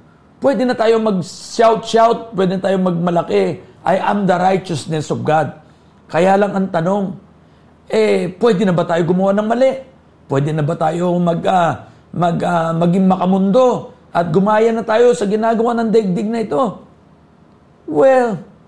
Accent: native